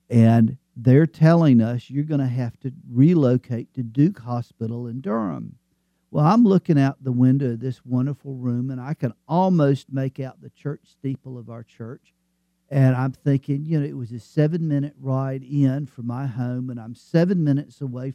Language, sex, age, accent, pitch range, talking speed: English, male, 50-69, American, 115-135 Hz, 185 wpm